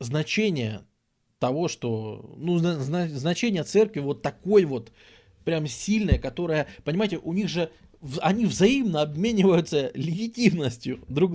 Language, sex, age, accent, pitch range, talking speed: Russian, male, 20-39, native, 120-180 Hz, 110 wpm